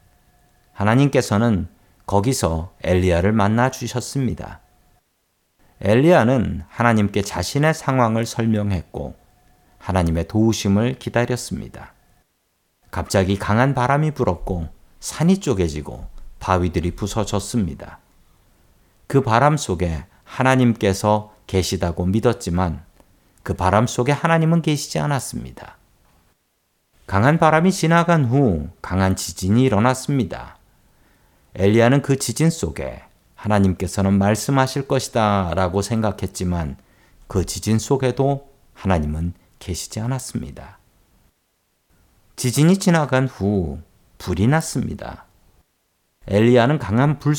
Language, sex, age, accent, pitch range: Korean, male, 40-59, native, 95-130 Hz